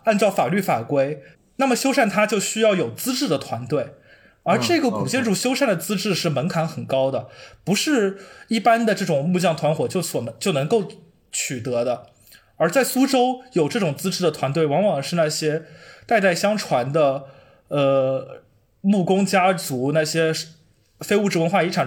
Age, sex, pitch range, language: 20-39, male, 150-215 Hz, Chinese